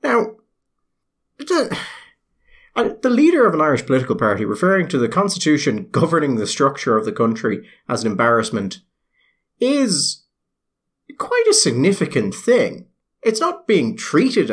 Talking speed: 130 wpm